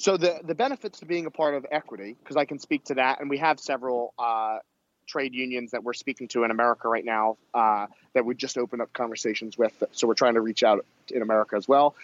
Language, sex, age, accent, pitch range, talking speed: English, male, 30-49, American, 125-155 Hz, 245 wpm